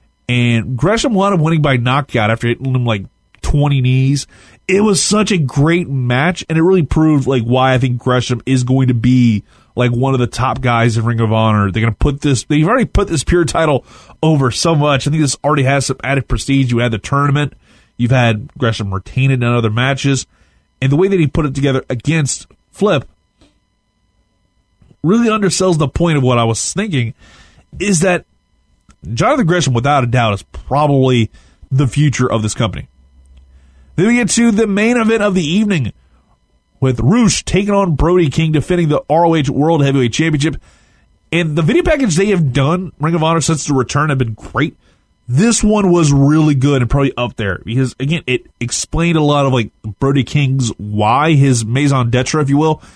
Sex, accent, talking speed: male, American, 195 wpm